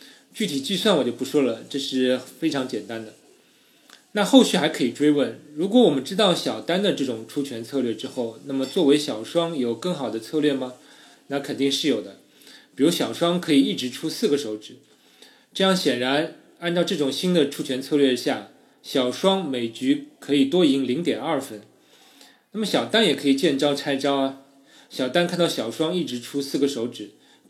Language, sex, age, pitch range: Chinese, male, 20-39, 130-170 Hz